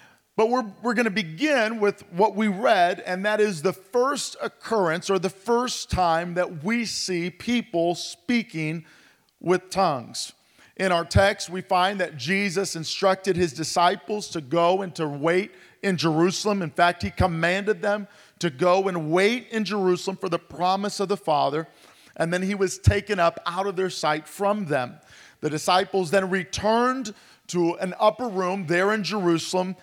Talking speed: 170 wpm